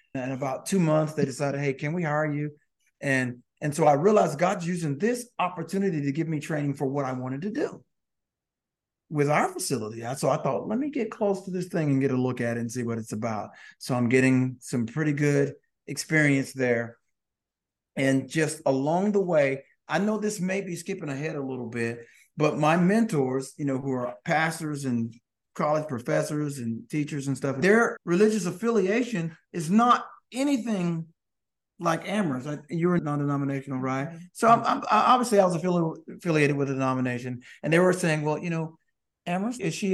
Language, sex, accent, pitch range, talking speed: English, male, American, 130-175 Hz, 190 wpm